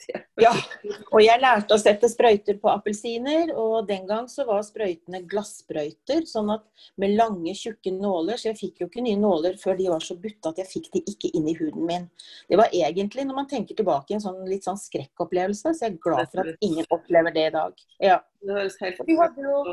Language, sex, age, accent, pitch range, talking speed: English, female, 40-59, Swedish, 185-230 Hz, 205 wpm